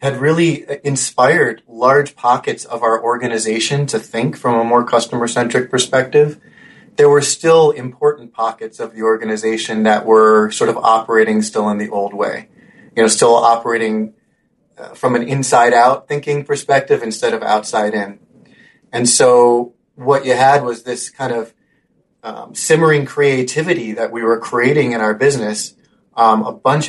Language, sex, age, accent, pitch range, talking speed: English, male, 30-49, American, 110-140 Hz, 155 wpm